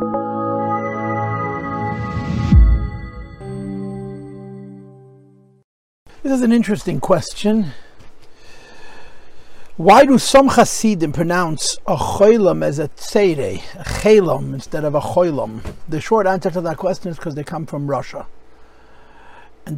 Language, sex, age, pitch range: English, male, 60-79, 135-185 Hz